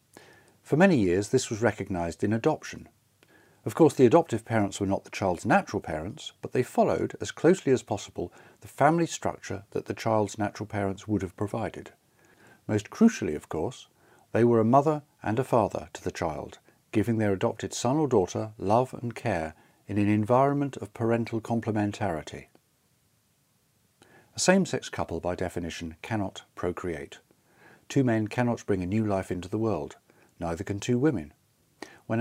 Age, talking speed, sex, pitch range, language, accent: 40-59, 165 wpm, male, 95-125 Hz, English, British